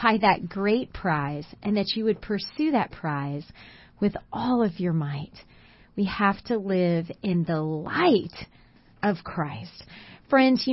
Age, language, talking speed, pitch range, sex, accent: 30-49, English, 145 wpm, 180-235 Hz, female, American